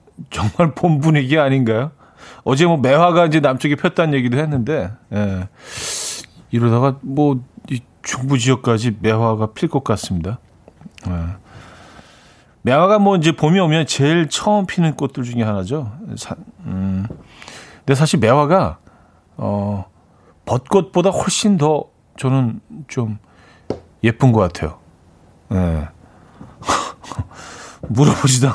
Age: 40-59